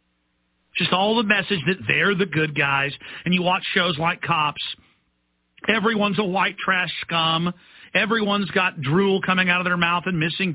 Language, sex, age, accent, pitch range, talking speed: English, male, 50-69, American, 155-200 Hz, 170 wpm